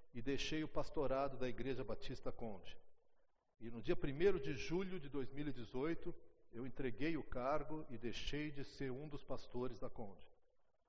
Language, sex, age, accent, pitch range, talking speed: Portuguese, male, 60-79, Brazilian, 145-205 Hz, 160 wpm